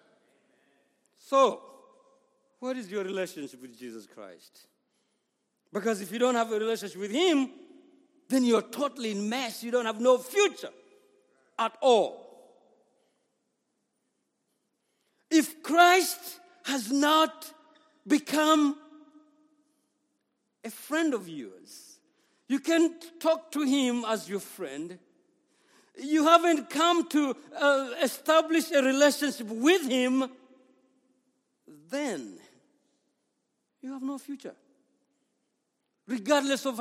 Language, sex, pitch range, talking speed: English, male, 225-300 Hz, 105 wpm